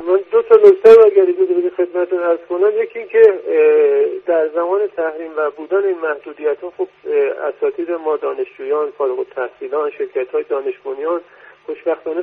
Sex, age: male, 50-69